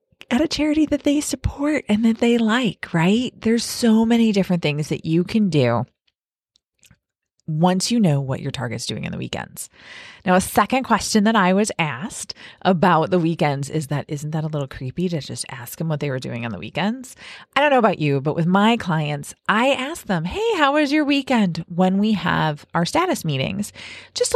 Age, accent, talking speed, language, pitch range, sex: 30-49, American, 205 wpm, English, 150-230 Hz, female